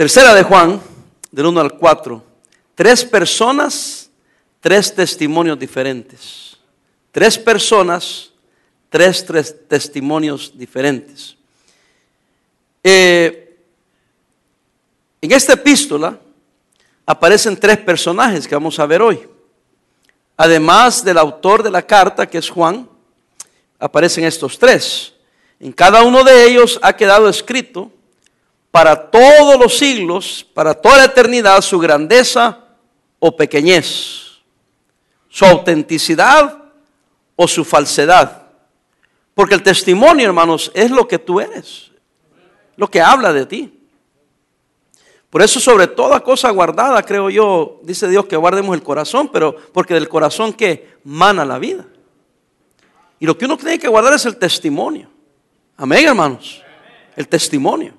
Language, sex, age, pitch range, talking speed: English, male, 50-69, 160-240 Hz, 120 wpm